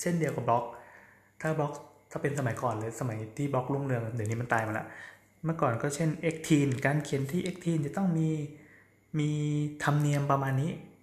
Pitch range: 125-155 Hz